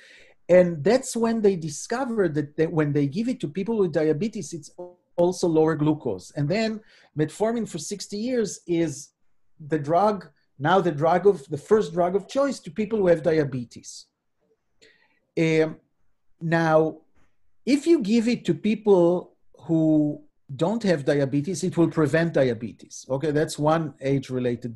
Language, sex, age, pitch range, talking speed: English, male, 40-59, 150-205 Hz, 150 wpm